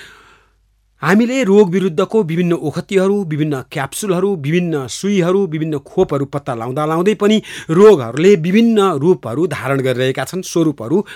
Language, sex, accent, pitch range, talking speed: English, male, Indian, 135-195 Hz, 100 wpm